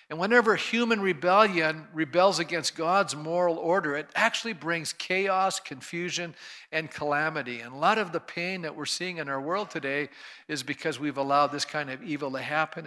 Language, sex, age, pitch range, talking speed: English, male, 50-69, 145-180 Hz, 180 wpm